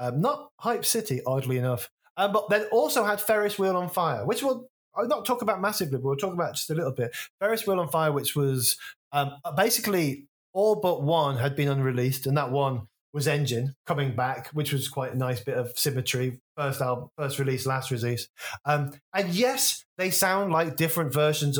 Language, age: English, 20-39